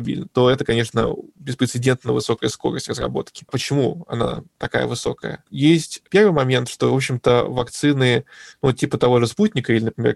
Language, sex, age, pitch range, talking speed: Russian, male, 20-39, 120-145 Hz, 150 wpm